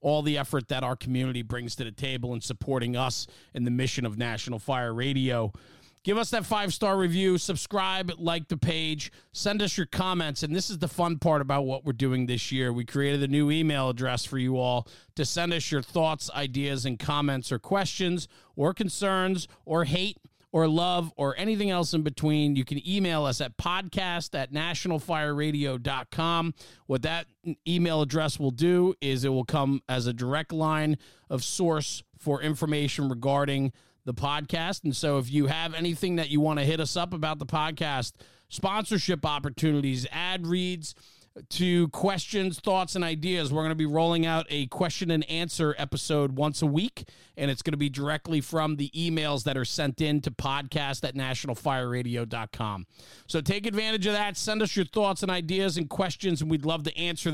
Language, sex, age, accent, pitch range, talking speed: English, male, 40-59, American, 135-170 Hz, 185 wpm